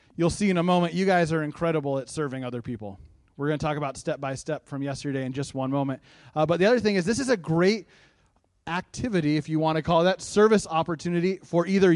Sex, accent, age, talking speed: male, American, 30-49, 230 wpm